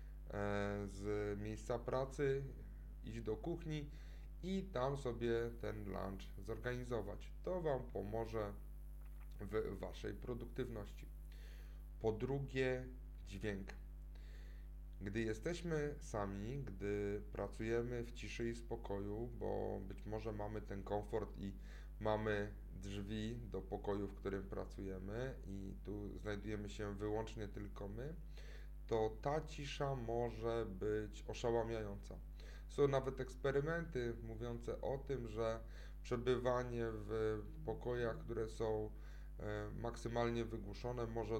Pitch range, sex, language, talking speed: 100-125 Hz, male, Polish, 105 wpm